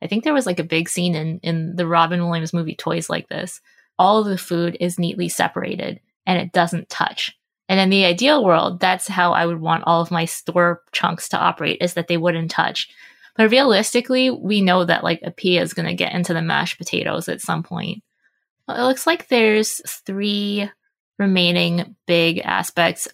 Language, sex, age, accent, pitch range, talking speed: English, female, 20-39, American, 170-210 Hz, 200 wpm